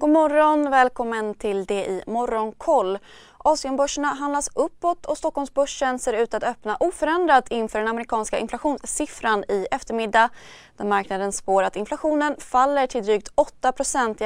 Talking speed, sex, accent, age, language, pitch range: 135 wpm, female, native, 20-39, Swedish, 220-280 Hz